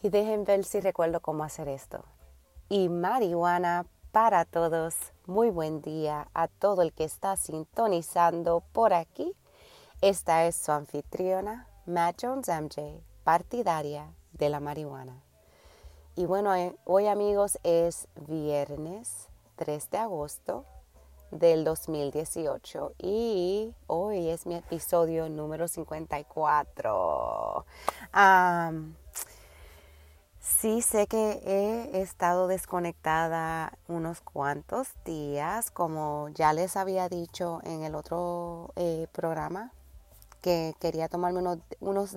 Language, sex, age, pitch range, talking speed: English, female, 30-49, 155-185 Hz, 110 wpm